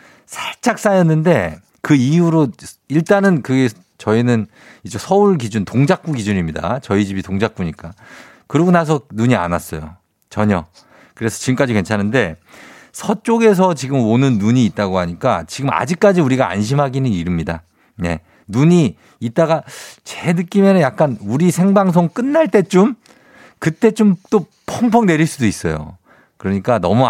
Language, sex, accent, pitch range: Korean, male, native, 105-170 Hz